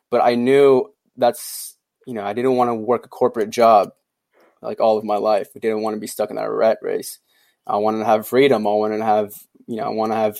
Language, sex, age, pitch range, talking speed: English, male, 20-39, 110-130 Hz, 255 wpm